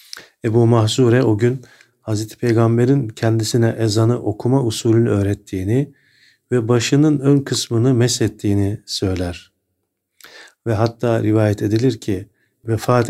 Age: 50-69